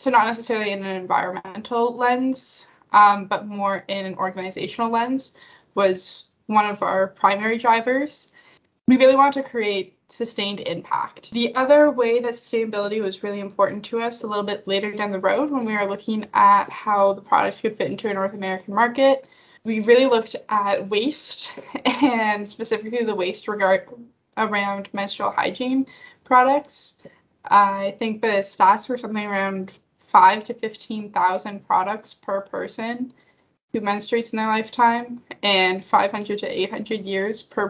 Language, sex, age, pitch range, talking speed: English, female, 10-29, 200-240 Hz, 155 wpm